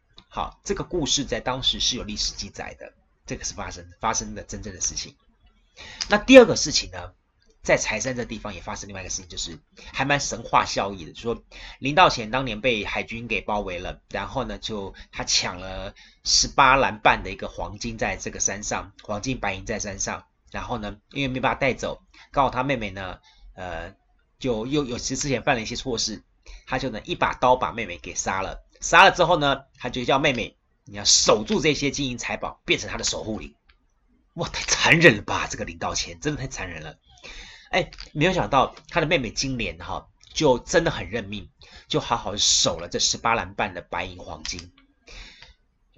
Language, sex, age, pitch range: Chinese, male, 30-49, 95-135 Hz